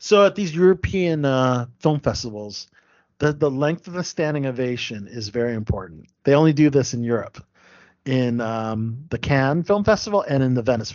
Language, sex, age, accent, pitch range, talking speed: English, male, 40-59, American, 115-155 Hz, 180 wpm